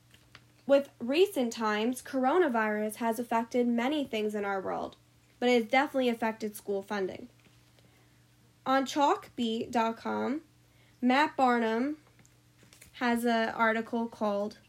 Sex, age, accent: female, 10-29, American